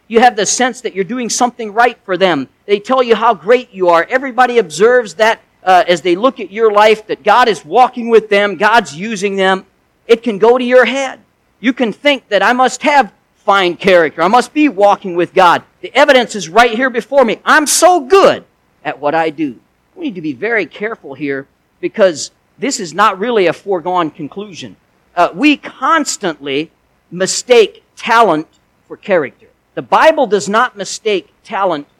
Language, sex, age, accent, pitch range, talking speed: English, male, 50-69, American, 175-250 Hz, 190 wpm